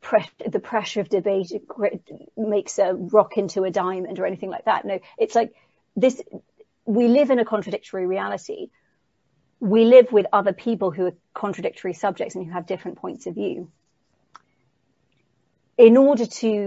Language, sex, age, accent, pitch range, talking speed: English, female, 40-59, British, 190-230 Hz, 155 wpm